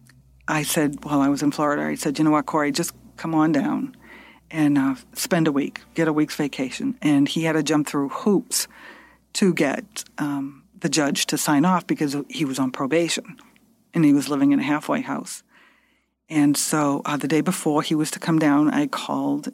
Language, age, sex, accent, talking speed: English, 50-69, female, American, 205 wpm